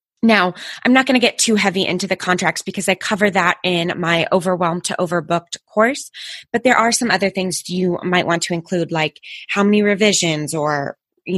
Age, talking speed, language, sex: 20-39, 200 wpm, English, female